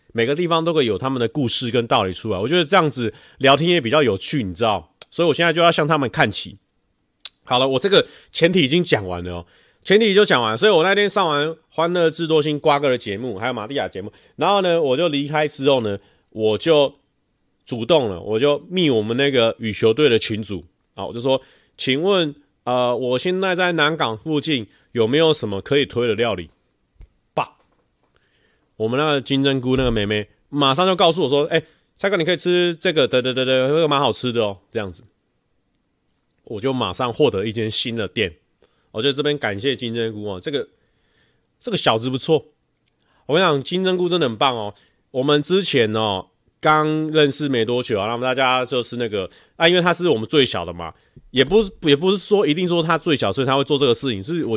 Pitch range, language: 115-160 Hz, Chinese